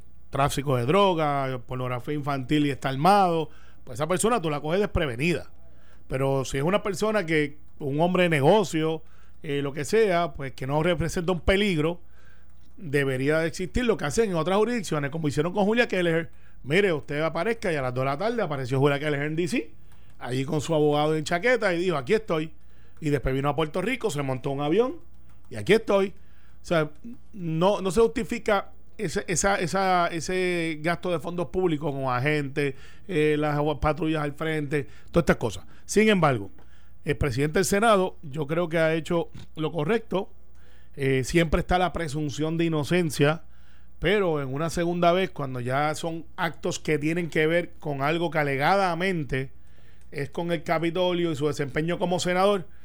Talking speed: 175 wpm